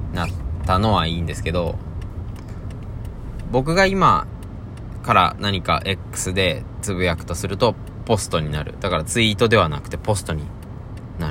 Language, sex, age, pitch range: Japanese, male, 20-39, 95-125 Hz